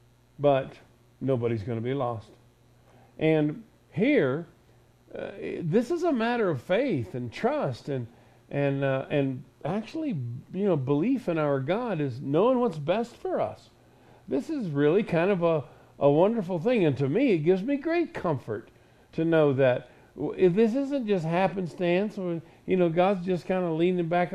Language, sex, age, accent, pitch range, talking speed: English, male, 50-69, American, 130-205 Hz, 170 wpm